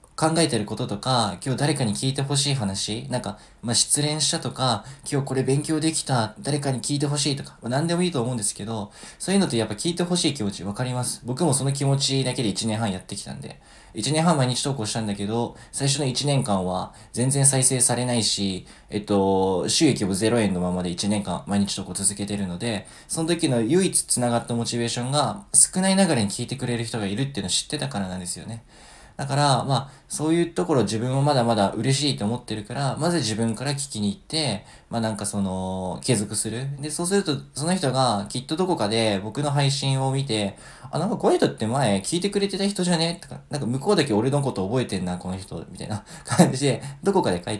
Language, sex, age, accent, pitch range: Japanese, male, 20-39, native, 105-145 Hz